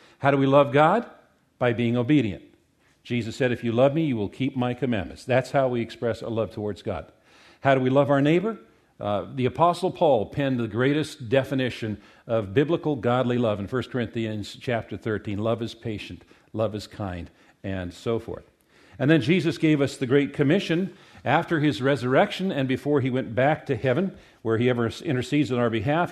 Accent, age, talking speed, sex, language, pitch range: American, 50-69, 195 wpm, male, English, 120-150 Hz